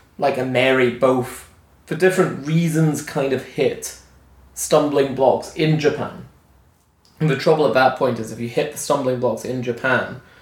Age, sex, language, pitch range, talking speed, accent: 20-39, male, English, 120-150 Hz, 165 wpm, British